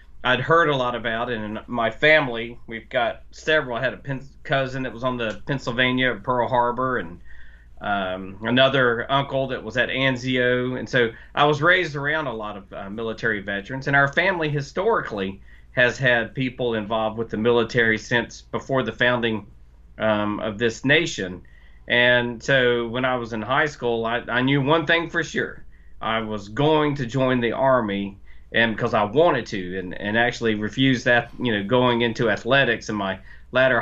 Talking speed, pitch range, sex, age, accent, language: 185 wpm, 110-130 Hz, male, 40-59, American, English